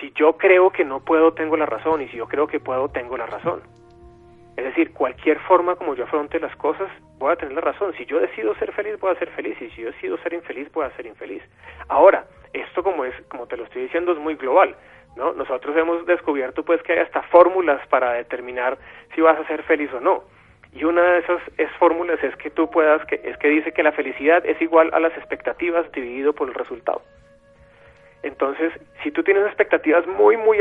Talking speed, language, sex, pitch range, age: 225 wpm, Spanish, male, 145-180 Hz, 30-49